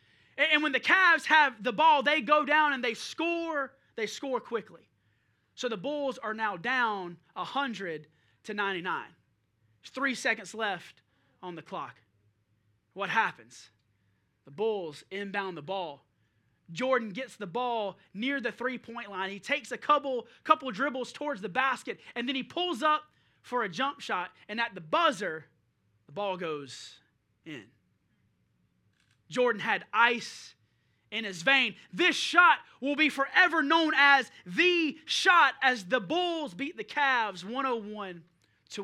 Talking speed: 150 wpm